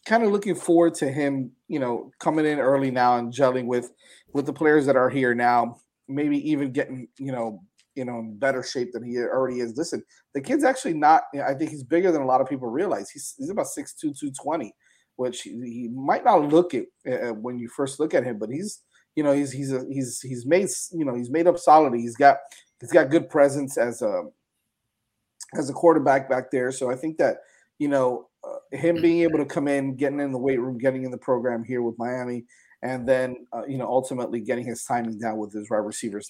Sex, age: male, 30-49